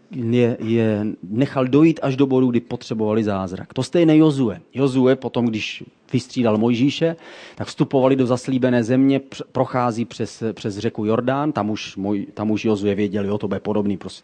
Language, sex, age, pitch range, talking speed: Czech, male, 30-49, 110-135 Hz, 170 wpm